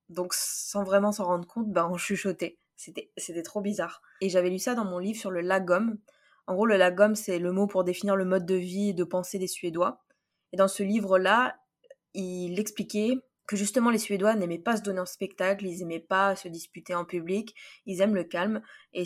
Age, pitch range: 20-39, 180-205 Hz